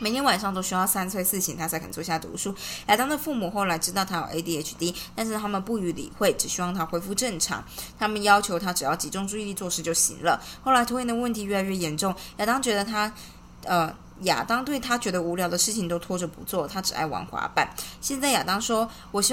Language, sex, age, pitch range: Chinese, female, 20-39, 170-215 Hz